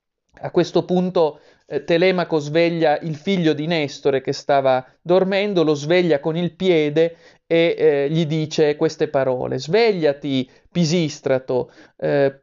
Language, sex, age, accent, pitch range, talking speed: Italian, male, 30-49, native, 140-175 Hz, 130 wpm